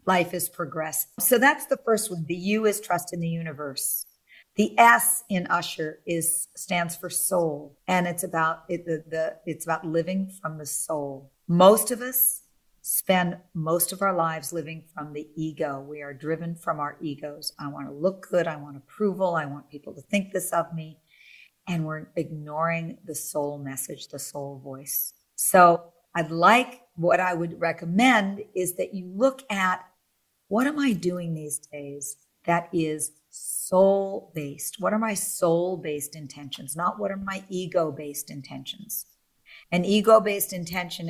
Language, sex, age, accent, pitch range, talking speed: English, female, 50-69, American, 155-185 Hz, 165 wpm